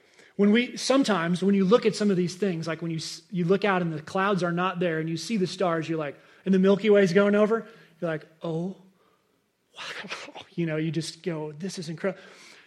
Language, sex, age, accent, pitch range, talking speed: English, male, 30-49, American, 170-200 Hz, 225 wpm